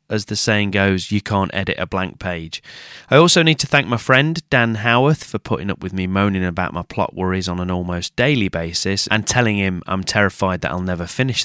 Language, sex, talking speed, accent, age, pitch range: English, male, 225 wpm, British, 30-49, 90-110 Hz